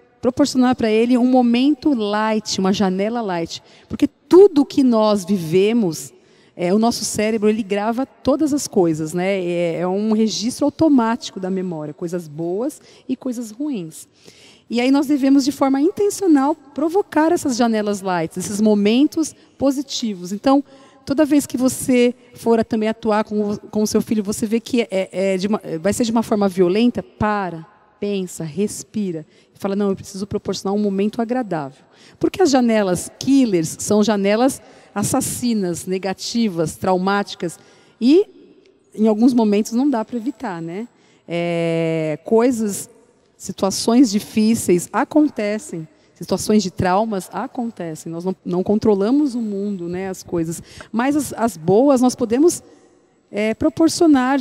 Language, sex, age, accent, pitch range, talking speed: Portuguese, female, 40-59, Brazilian, 190-260 Hz, 145 wpm